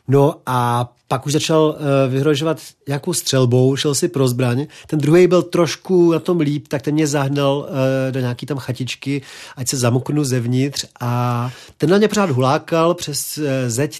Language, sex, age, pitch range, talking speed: Czech, male, 40-59, 125-150 Hz, 165 wpm